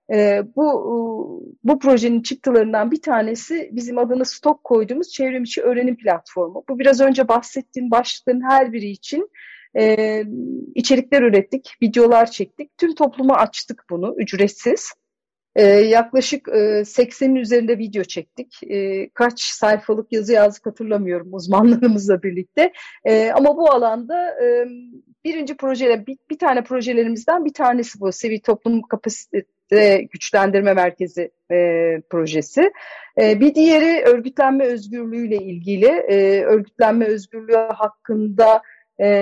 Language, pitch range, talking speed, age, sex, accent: Turkish, 205-265 Hz, 120 wpm, 40-59, female, native